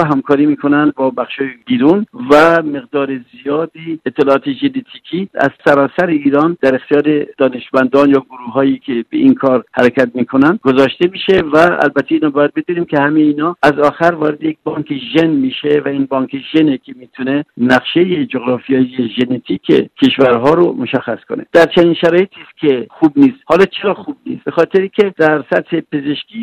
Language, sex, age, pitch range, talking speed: Persian, male, 60-79, 140-175 Hz, 160 wpm